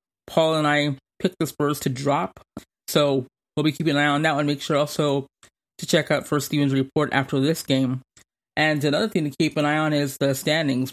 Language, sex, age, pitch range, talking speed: English, male, 20-39, 135-150 Hz, 220 wpm